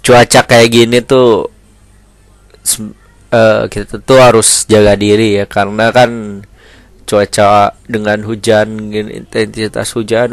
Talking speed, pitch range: 105 wpm, 105-130 Hz